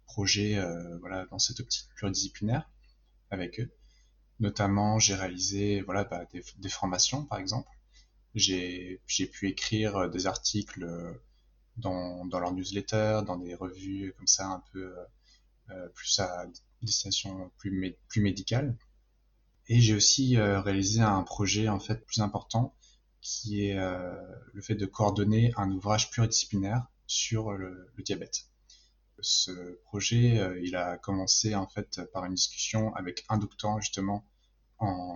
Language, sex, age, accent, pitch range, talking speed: French, male, 20-39, French, 90-110 Hz, 145 wpm